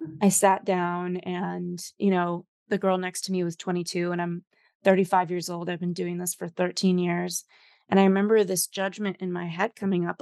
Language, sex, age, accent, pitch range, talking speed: English, female, 20-39, American, 175-200 Hz, 205 wpm